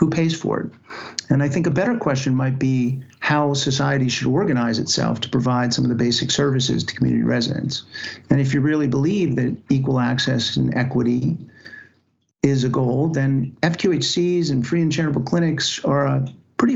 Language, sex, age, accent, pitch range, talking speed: English, male, 50-69, American, 130-150 Hz, 180 wpm